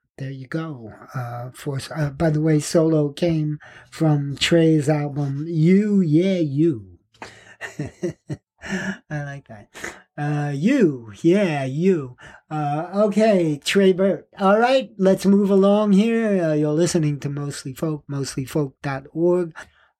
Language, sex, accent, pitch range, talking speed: English, male, American, 135-170 Hz, 125 wpm